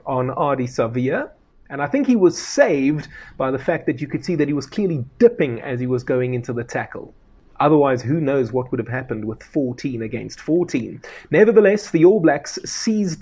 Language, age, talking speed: English, 30-49, 200 wpm